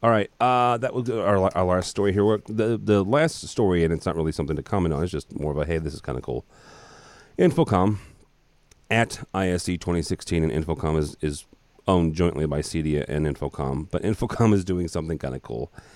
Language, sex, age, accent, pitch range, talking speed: English, male, 30-49, American, 80-95 Hz, 205 wpm